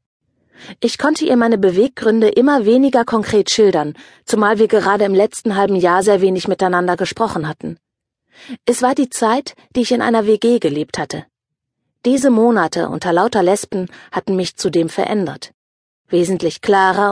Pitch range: 175-230 Hz